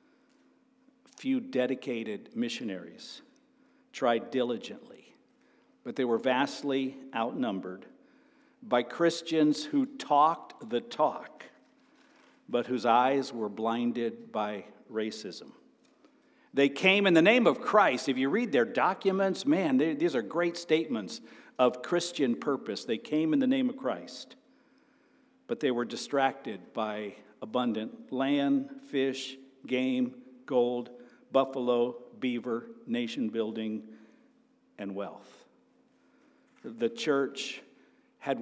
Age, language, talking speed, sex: 50-69, English, 110 wpm, male